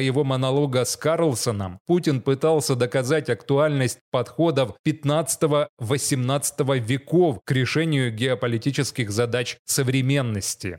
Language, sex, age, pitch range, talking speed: Russian, male, 20-39, 125-155 Hz, 90 wpm